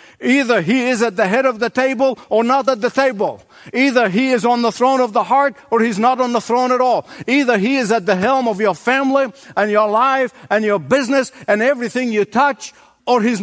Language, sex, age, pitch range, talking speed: English, male, 60-79, 200-275 Hz, 230 wpm